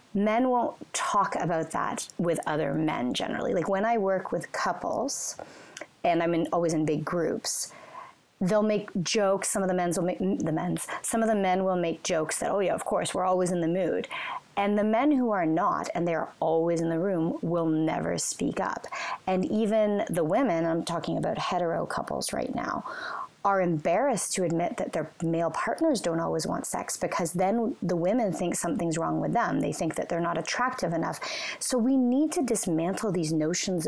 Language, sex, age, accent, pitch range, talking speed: English, female, 30-49, American, 170-215 Hz, 200 wpm